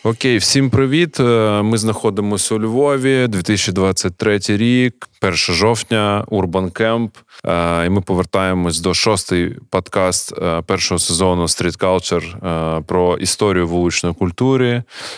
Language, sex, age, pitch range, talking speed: Ukrainian, male, 20-39, 90-110 Hz, 105 wpm